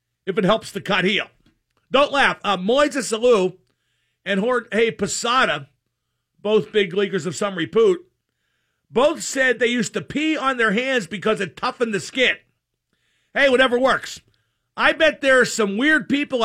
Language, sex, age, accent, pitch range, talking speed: English, male, 50-69, American, 190-265 Hz, 165 wpm